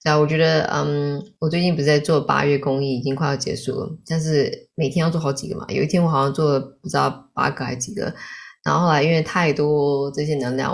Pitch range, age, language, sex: 140-175 Hz, 10-29, Chinese, female